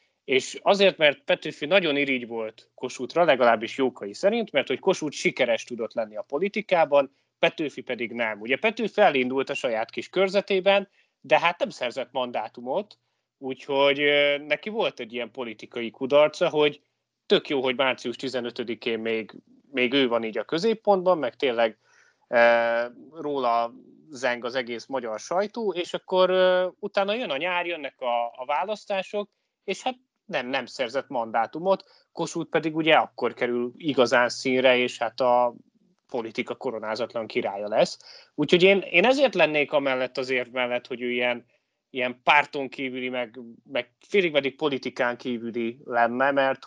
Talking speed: 145 wpm